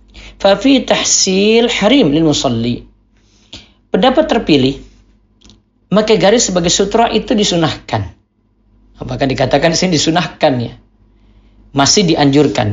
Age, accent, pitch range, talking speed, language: 40-59, native, 115-175 Hz, 95 wpm, Indonesian